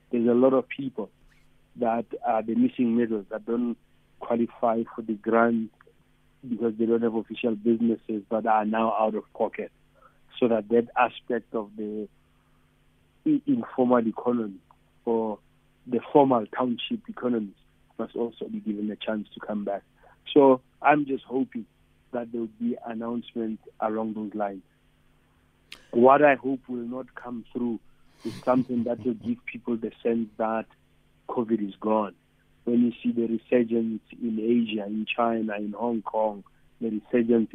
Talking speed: 150 wpm